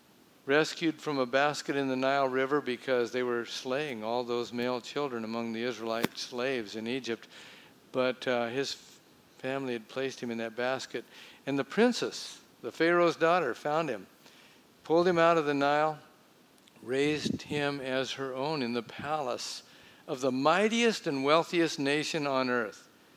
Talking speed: 160 wpm